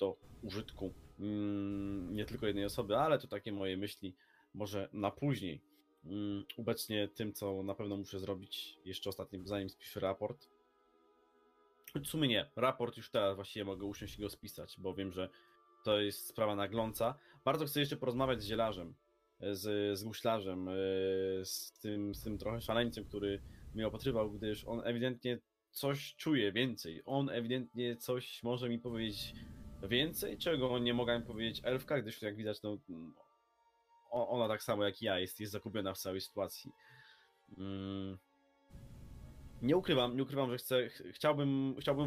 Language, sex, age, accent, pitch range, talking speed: Polish, male, 20-39, native, 100-125 Hz, 145 wpm